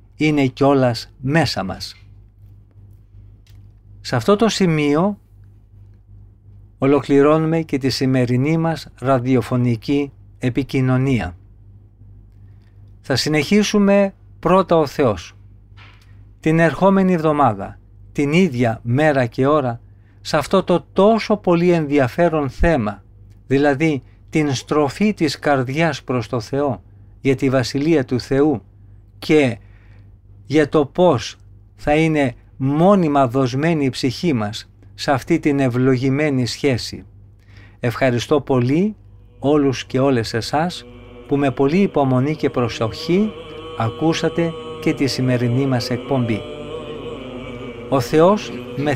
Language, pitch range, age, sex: Greek, 100-150 Hz, 50-69, male